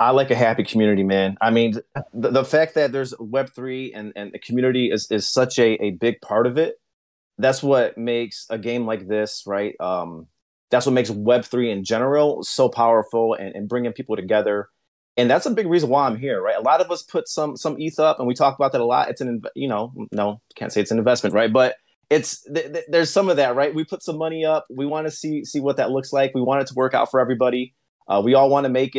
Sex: male